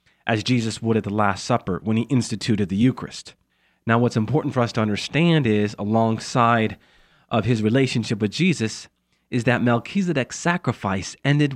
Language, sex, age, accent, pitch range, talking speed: English, male, 30-49, American, 105-140 Hz, 160 wpm